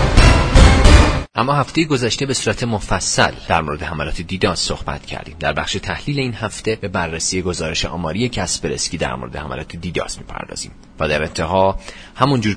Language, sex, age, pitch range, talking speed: Persian, male, 30-49, 85-115 Hz, 150 wpm